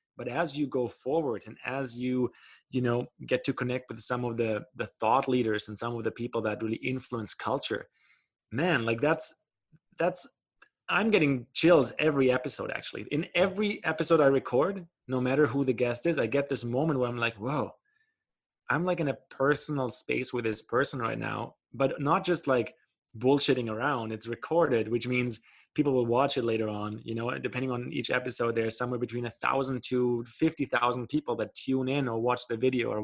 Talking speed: 195 wpm